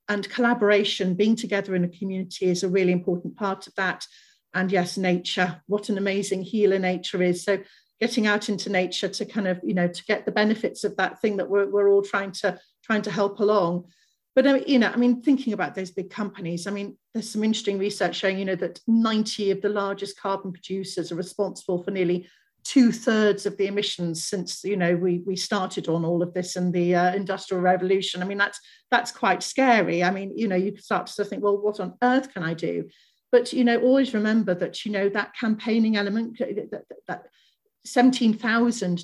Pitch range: 185-220 Hz